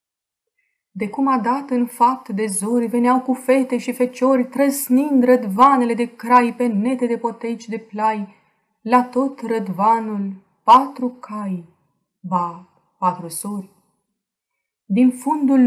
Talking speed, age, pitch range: 125 wpm, 20-39, 205-250 Hz